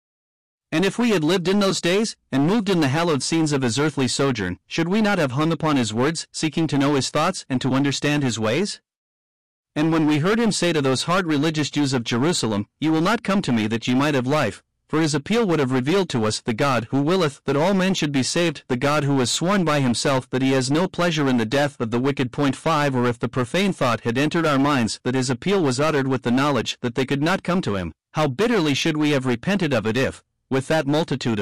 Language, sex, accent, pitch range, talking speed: English, male, American, 125-165 Hz, 255 wpm